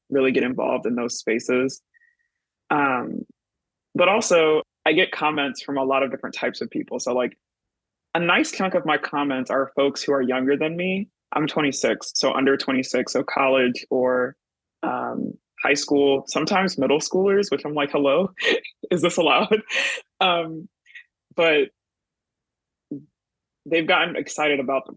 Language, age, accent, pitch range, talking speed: English, 20-39, American, 130-160 Hz, 150 wpm